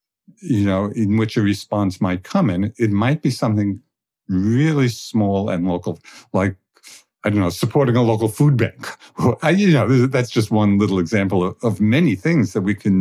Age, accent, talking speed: 50-69, American, 180 wpm